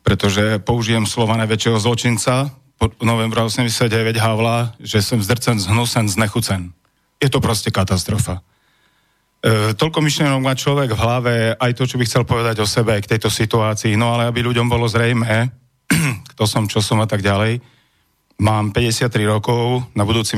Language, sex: Slovak, male